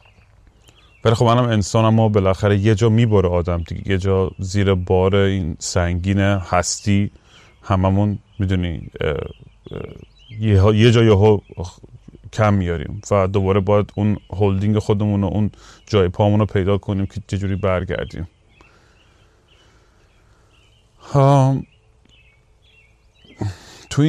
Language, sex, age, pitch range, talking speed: Persian, male, 30-49, 100-115 Hz, 110 wpm